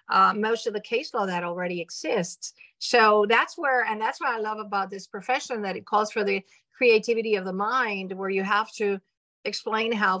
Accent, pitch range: American, 180-220 Hz